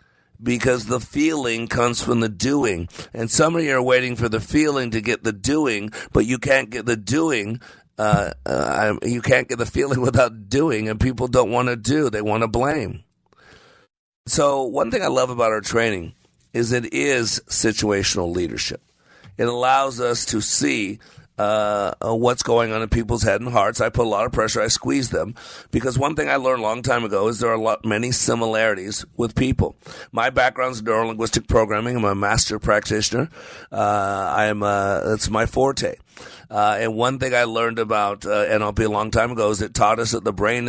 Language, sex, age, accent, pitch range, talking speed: English, male, 50-69, American, 105-125 Hz, 200 wpm